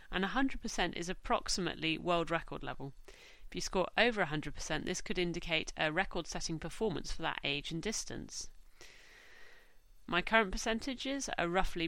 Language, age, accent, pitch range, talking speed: English, 30-49, British, 155-195 Hz, 145 wpm